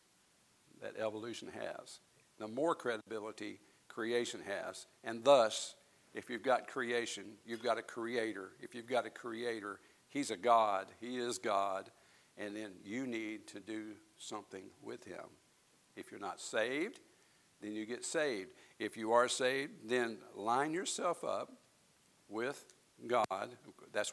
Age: 50-69